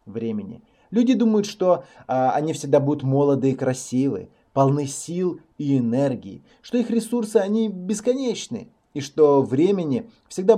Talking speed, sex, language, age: 130 wpm, male, Russian, 20-39